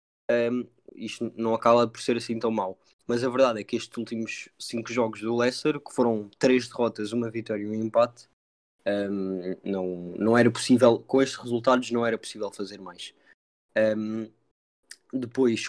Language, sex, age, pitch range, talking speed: Portuguese, male, 20-39, 105-120 Hz, 155 wpm